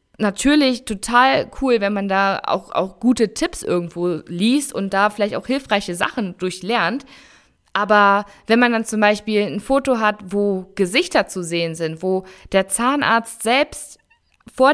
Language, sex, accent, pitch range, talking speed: German, female, German, 190-235 Hz, 155 wpm